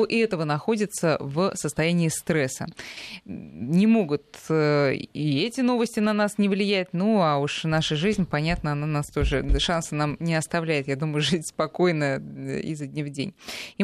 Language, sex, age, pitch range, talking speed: Russian, female, 20-39, 150-210 Hz, 165 wpm